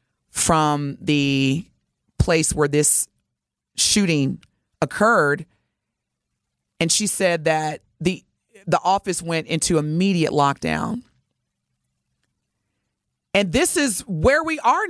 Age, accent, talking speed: 30-49, American, 95 wpm